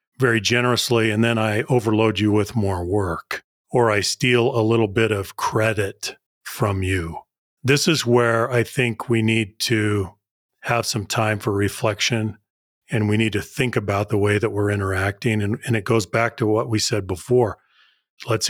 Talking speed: 180 wpm